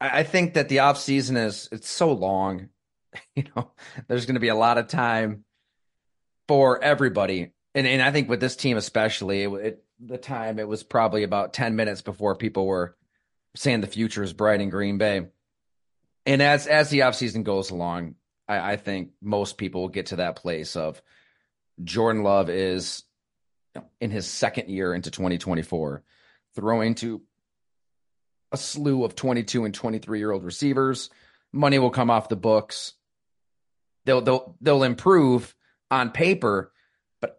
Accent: American